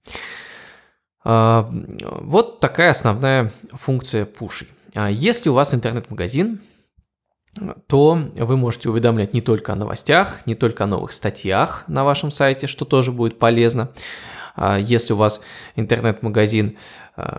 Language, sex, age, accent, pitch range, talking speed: Russian, male, 20-39, native, 110-135 Hz, 115 wpm